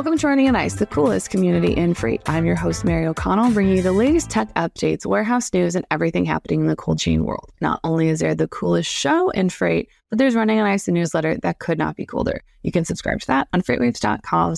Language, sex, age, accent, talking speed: English, female, 20-39, American, 245 wpm